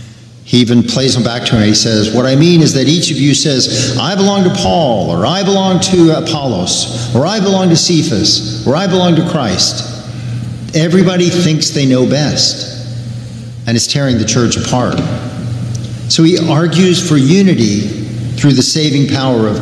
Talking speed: 175 wpm